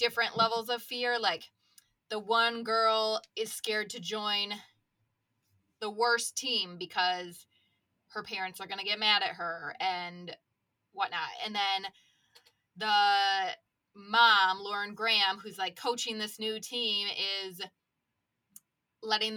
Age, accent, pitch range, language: 20-39, American, 180-225 Hz, English